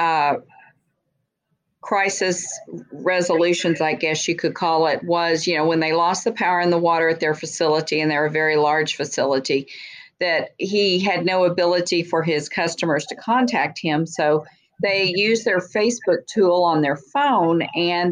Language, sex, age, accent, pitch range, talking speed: English, female, 50-69, American, 155-180 Hz, 165 wpm